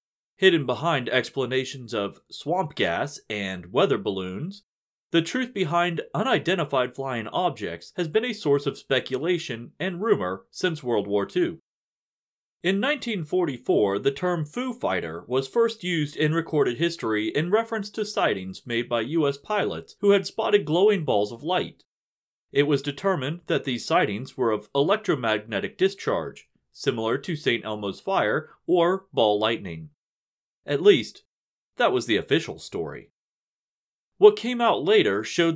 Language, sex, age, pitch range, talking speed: English, male, 30-49, 130-195 Hz, 140 wpm